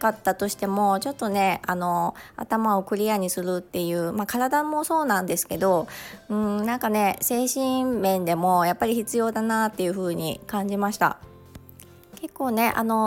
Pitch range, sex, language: 185-250 Hz, male, Japanese